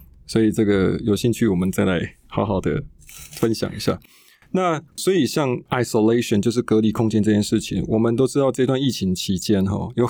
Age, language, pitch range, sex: 20-39, Chinese, 95-115 Hz, male